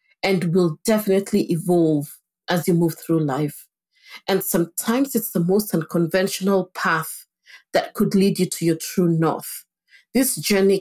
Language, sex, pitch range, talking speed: English, female, 160-200 Hz, 145 wpm